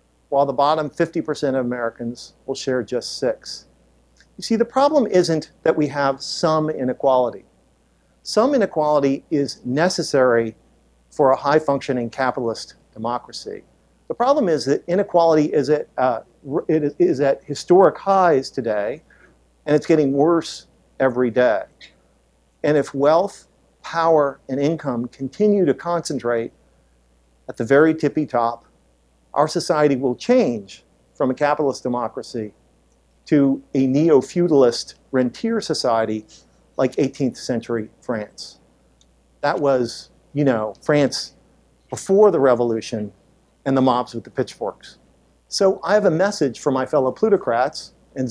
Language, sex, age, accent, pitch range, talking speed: English, male, 50-69, American, 105-155 Hz, 125 wpm